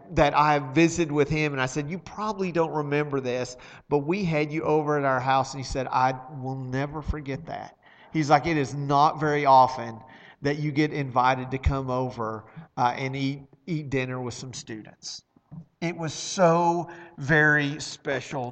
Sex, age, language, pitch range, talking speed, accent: male, 40-59, English, 135-165 Hz, 180 wpm, American